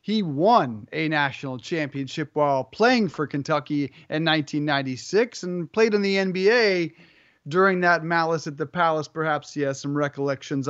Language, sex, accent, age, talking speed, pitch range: English, male, American, 30-49, 150 wpm, 160-205 Hz